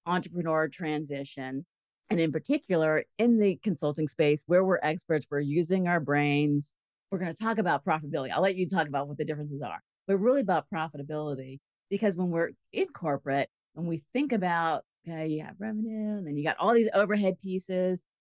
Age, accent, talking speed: 40-59, American, 185 wpm